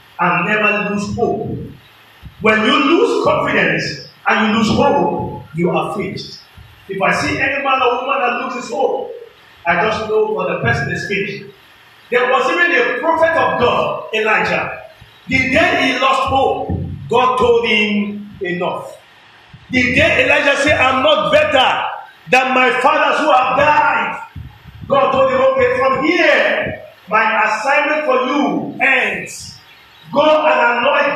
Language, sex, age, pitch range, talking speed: English, male, 40-59, 210-295 Hz, 150 wpm